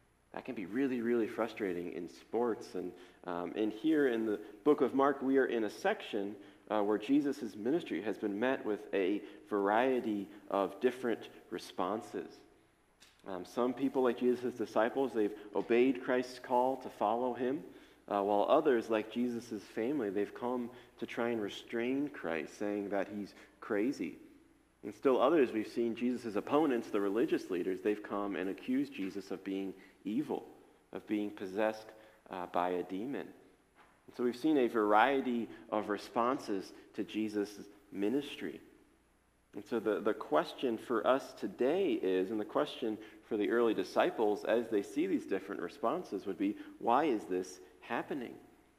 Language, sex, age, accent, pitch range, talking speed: English, male, 40-59, American, 105-130 Hz, 160 wpm